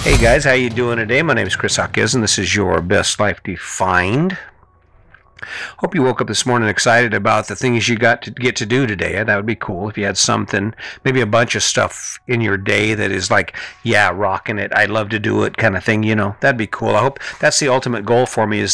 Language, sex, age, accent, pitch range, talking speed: English, male, 50-69, American, 100-120 Hz, 255 wpm